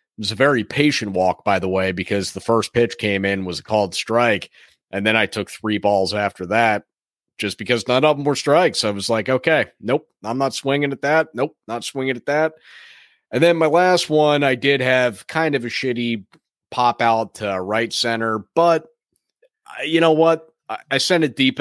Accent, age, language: American, 30-49, English